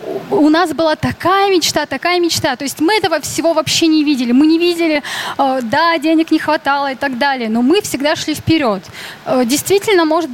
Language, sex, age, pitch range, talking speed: Russian, female, 20-39, 255-320 Hz, 185 wpm